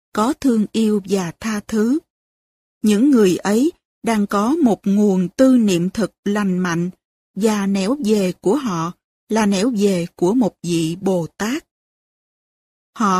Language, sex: Vietnamese, female